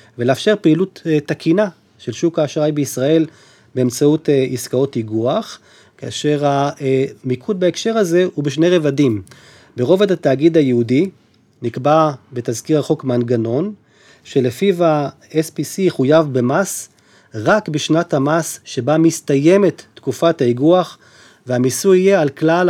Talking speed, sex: 105 wpm, male